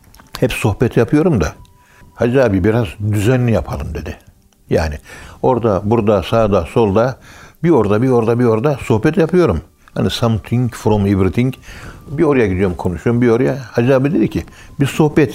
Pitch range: 95-125 Hz